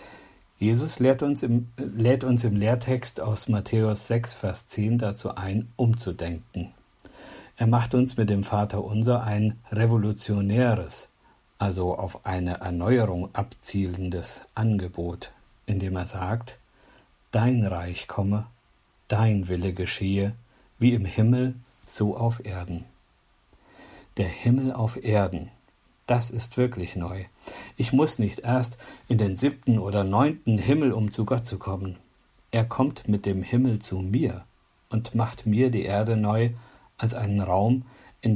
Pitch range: 100-120 Hz